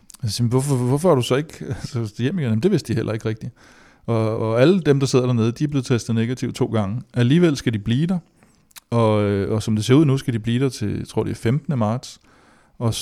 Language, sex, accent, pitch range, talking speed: Danish, male, native, 110-125 Hz, 255 wpm